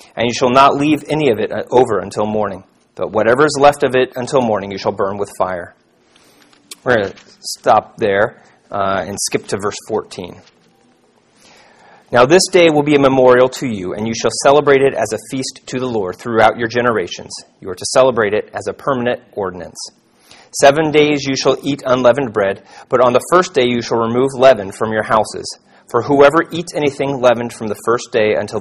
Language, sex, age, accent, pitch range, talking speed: English, male, 30-49, American, 115-140 Hz, 200 wpm